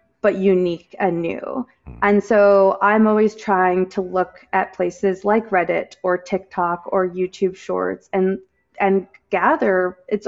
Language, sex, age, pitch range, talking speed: English, female, 20-39, 180-205 Hz, 140 wpm